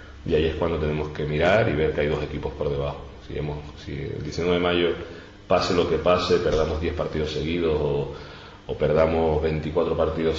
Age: 30-49